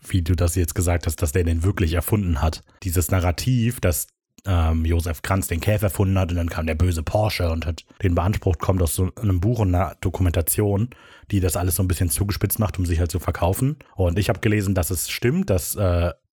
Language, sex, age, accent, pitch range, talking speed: German, male, 30-49, German, 90-110 Hz, 230 wpm